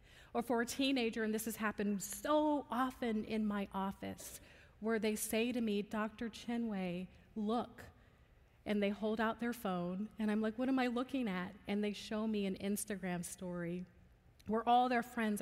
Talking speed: 185 wpm